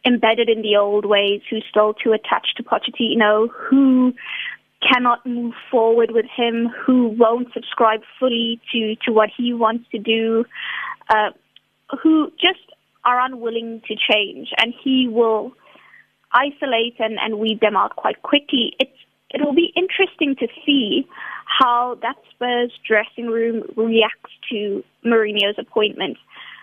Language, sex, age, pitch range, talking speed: English, female, 20-39, 220-255 Hz, 135 wpm